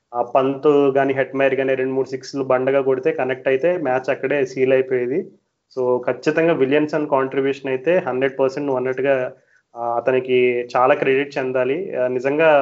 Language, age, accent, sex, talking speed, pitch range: Telugu, 30-49, native, male, 145 wpm, 130-155 Hz